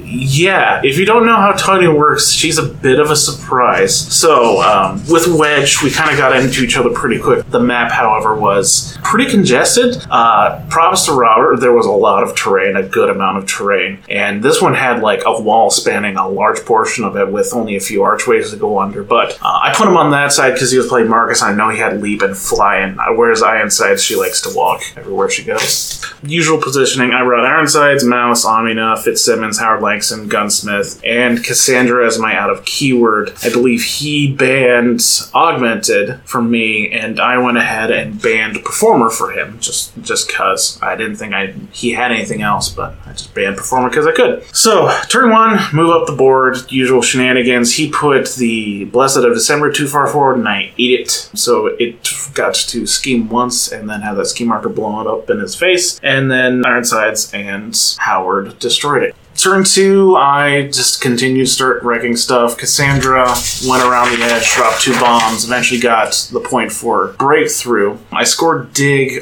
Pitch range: 120-175 Hz